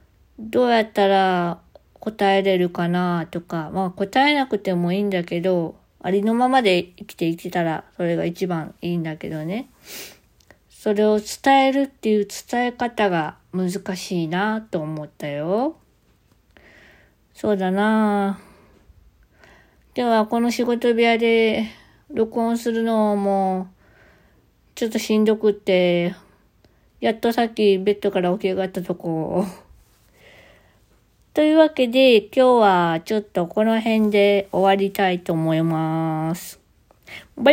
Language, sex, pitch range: Japanese, female, 180-225 Hz